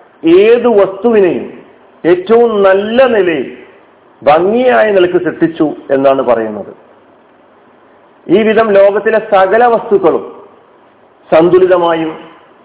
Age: 40-59